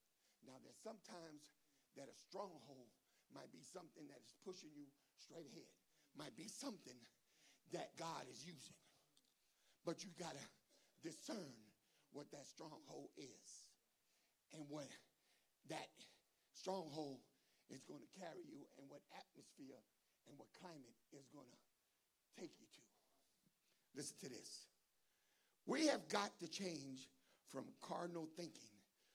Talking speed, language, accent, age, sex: 130 wpm, English, American, 60-79, male